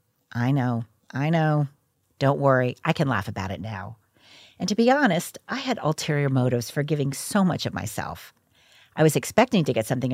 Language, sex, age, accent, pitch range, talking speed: English, female, 50-69, American, 115-165 Hz, 190 wpm